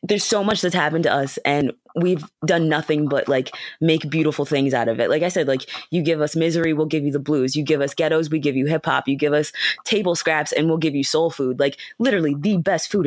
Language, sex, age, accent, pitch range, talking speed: English, female, 20-39, American, 140-170 Hz, 255 wpm